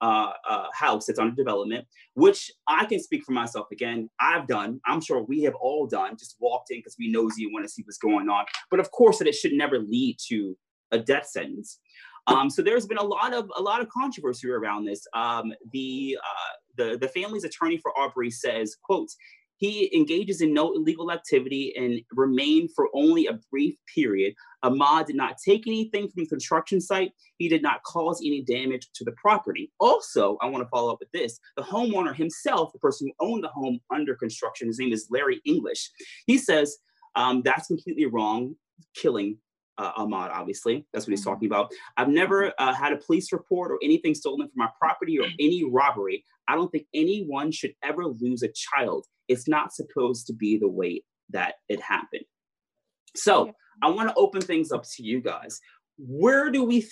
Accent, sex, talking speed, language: American, male, 200 wpm, English